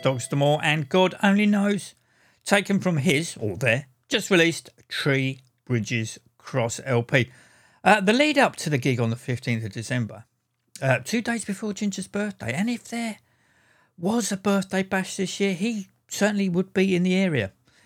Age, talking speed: 50-69, 170 wpm